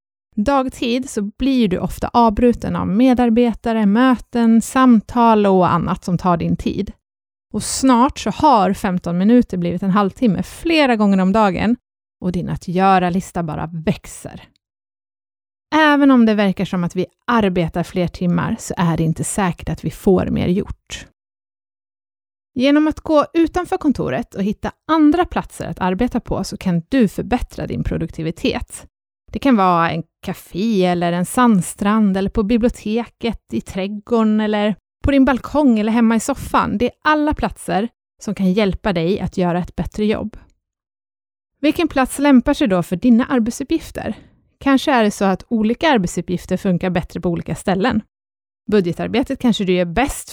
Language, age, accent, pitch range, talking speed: Swedish, 30-49, native, 175-245 Hz, 160 wpm